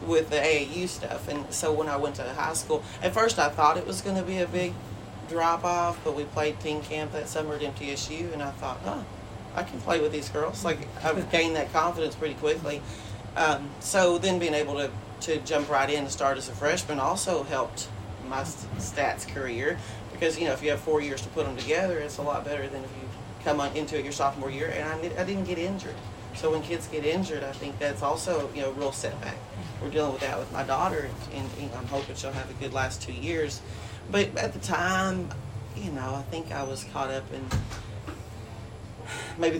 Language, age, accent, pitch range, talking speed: English, 30-49, American, 110-150 Hz, 225 wpm